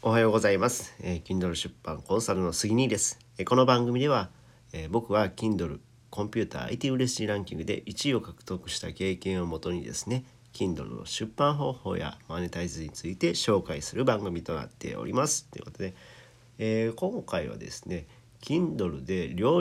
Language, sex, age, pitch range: Japanese, male, 40-59, 90-130 Hz